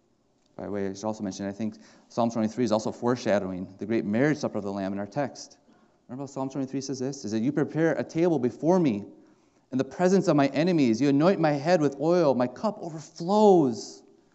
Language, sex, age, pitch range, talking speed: English, male, 30-49, 120-170 Hz, 220 wpm